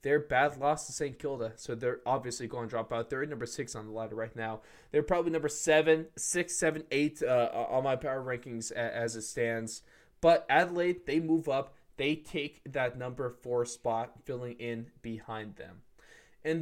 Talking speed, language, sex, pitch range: 190 wpm, English, male, 115-160 Hz